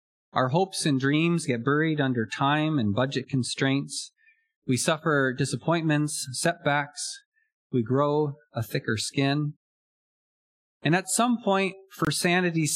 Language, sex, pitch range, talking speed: English, male, 130-180 Hz, 120 wpm